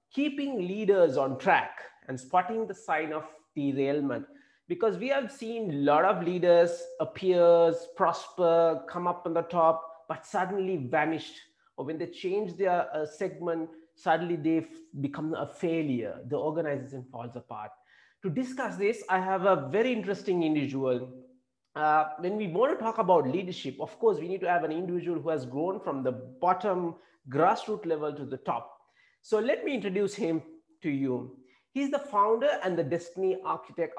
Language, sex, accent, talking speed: English, male, Indian, 165 wpm